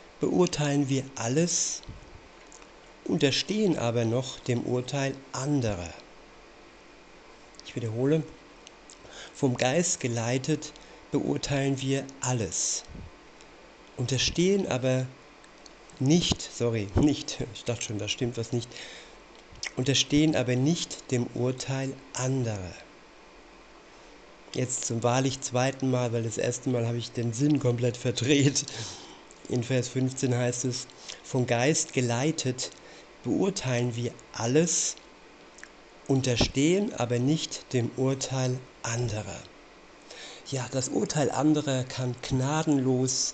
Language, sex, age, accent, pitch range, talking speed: German, male, 50-69, German, 120-145 Hz, 100 wpm